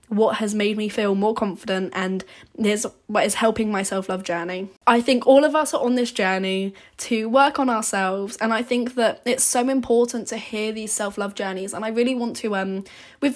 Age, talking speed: 10-29, 210 wpm